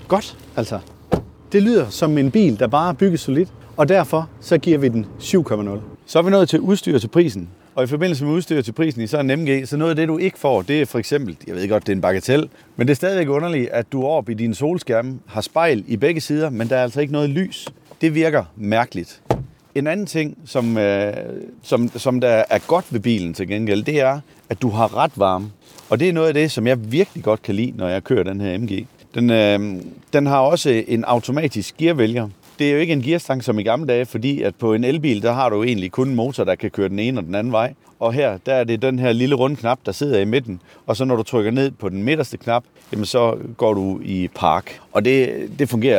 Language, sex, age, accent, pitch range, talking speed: Danish, male, 30-49, native, 110-150 Hz, 250 wpm